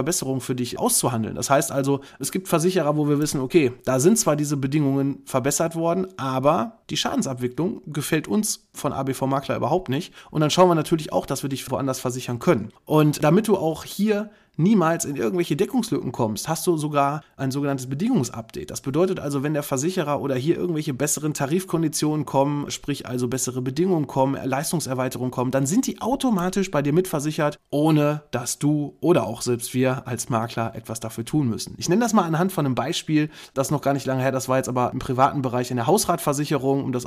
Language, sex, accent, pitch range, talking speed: German, male, German, 125-160 Hz, 200 wpm